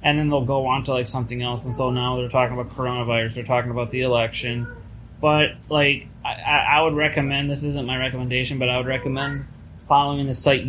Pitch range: 125-145 Hz